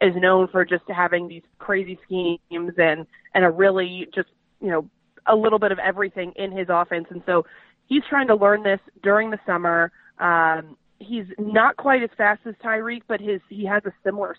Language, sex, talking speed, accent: English, female, 195 wpm, American